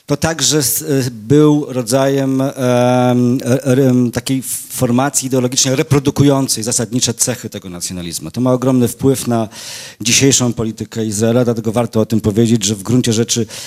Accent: native